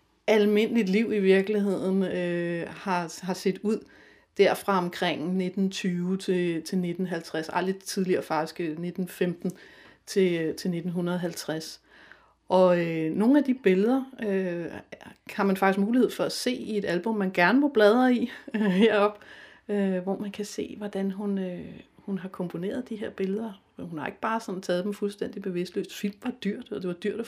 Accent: native